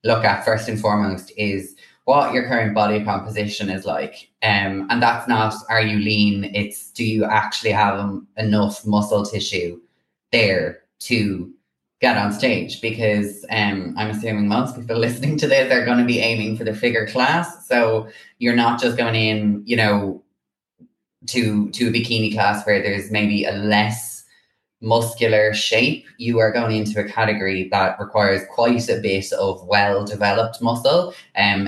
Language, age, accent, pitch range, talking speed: English, 20-39, Irish, 105-115 Hz, 165 wpm